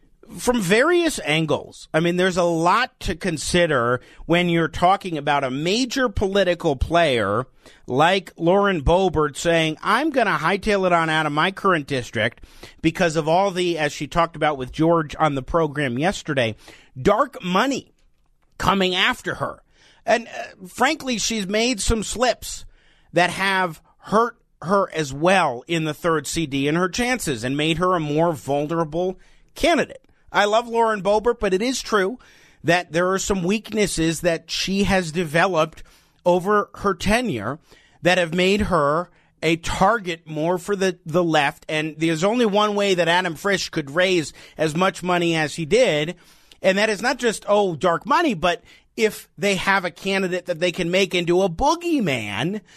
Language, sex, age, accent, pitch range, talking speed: English, male, 40-59, American, 160-200 Hz, 165 wpm